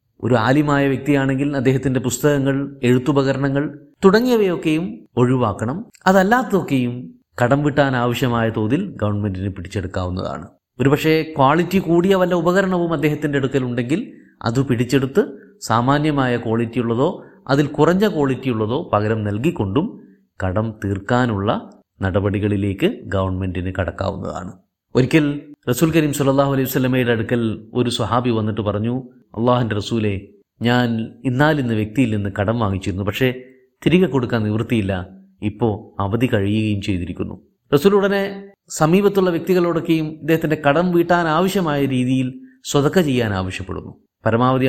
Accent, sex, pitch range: native, male, 110-150 Hz